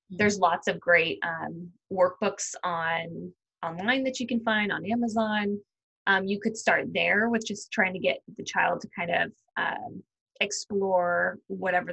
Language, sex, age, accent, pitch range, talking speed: English, female, 20-39, American, 180-215 Hz, 160 wpm